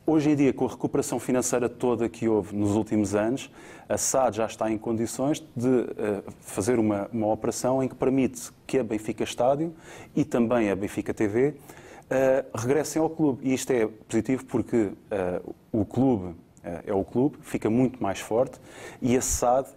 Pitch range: 110-130 Hz